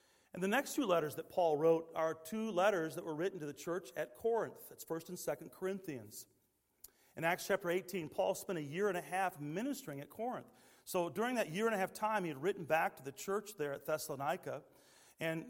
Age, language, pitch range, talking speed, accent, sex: 40-59, English, 145-185 Hz, 220 wpm, American, male